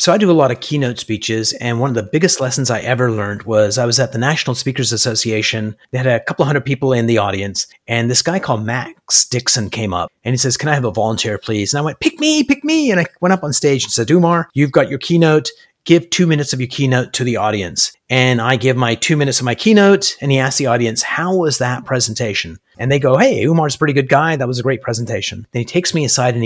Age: 30-49